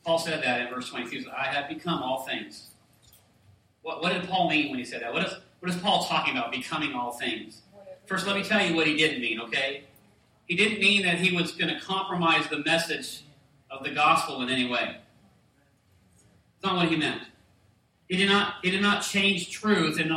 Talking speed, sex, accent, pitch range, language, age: 200 wpm, male, American, 140-175 Hz, English, 40-59